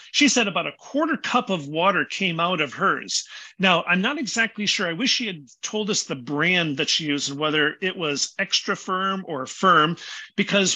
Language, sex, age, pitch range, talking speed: English, male, 50-69, 160-220 Hz, 205 wpm